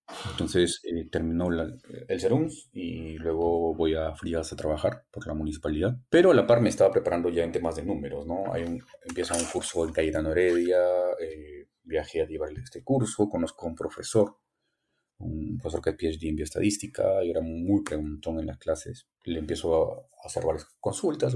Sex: male